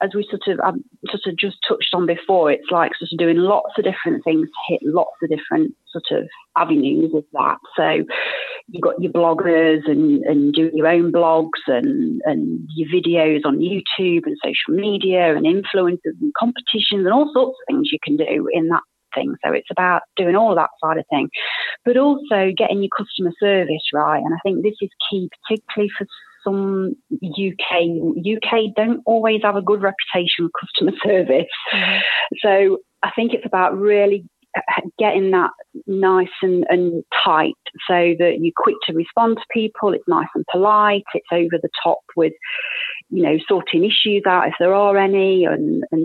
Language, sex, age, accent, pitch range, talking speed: English, female, 30-49, British, 175-230 Hz, 180 wpm